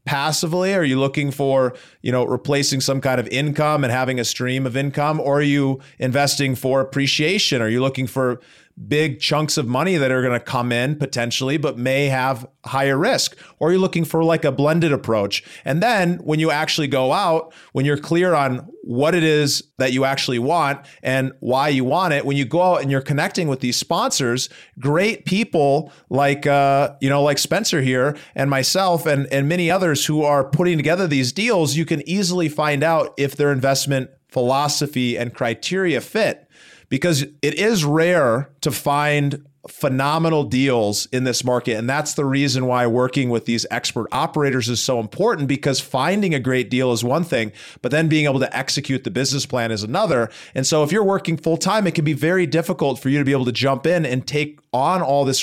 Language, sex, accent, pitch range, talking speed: English, male, American, 130-155 Hz, 200 wpm